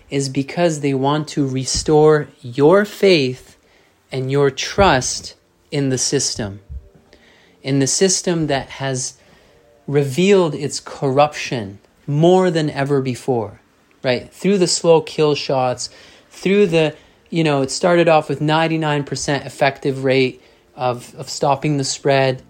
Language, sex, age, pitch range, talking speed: English, male, 30-49, 135-155 Hz, 130 wpm